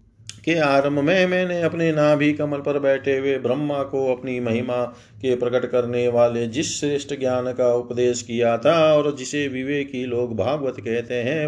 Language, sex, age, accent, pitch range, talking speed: Hindi, male, 40-59, native, 120-145 Hz, 165 wpm